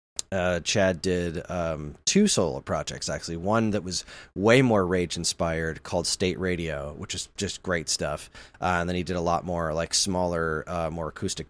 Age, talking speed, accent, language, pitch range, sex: 30-49, 190 wpm, American, English, 85-105 Hz, male